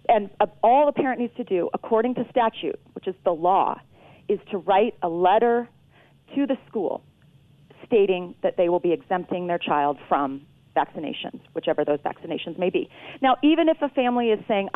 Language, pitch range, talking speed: English, 180-245 Hz, 180 wpm